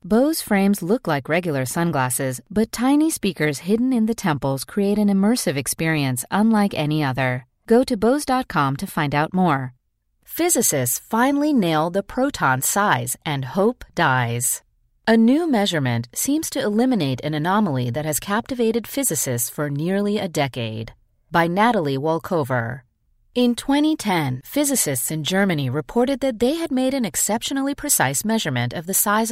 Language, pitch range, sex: English, 140-235 Hz, female